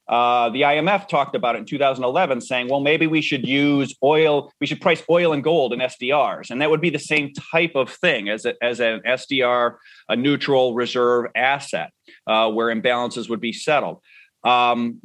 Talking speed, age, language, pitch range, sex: 190 wpm, 30-49, English, 120-150 Hz, male